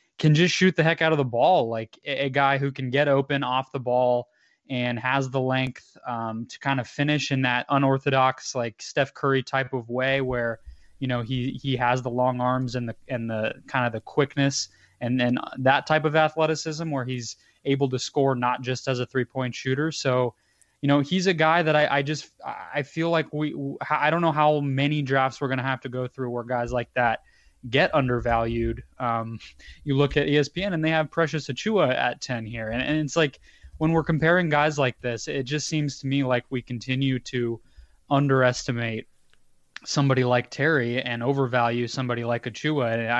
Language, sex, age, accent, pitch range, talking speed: English, male, 20-39, American, 120-145 Hz, 205 wpm